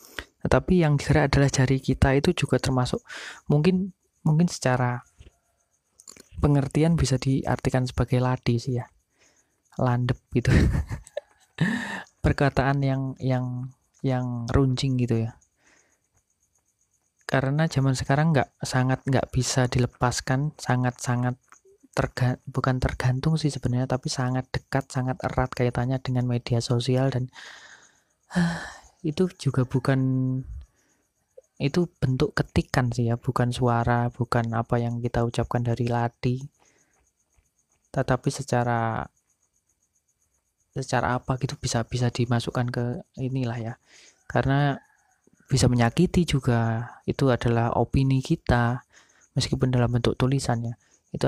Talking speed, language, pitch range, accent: 110 wpm, Indonesian, 120-135 Hz, native